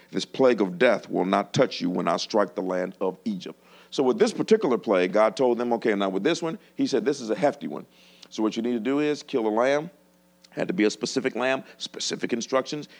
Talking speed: 245 wpm